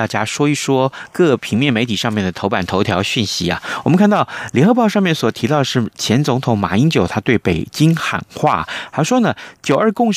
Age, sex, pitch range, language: 30-49, male, 105-155 Hz, Chinese